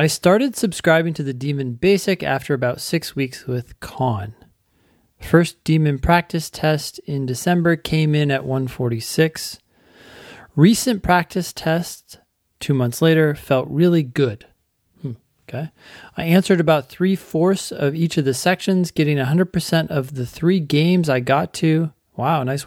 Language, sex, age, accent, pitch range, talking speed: English, male, 30-49, American, 130-170 Hz, 145 wpm